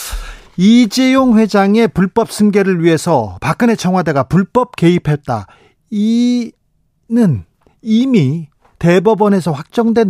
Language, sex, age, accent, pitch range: Korean, male, 40-59, native, 150-210 Hz